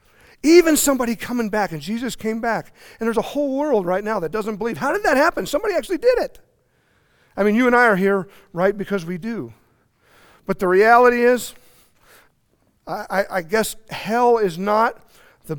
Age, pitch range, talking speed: 40-59, 180-220 Hz, 190 wpm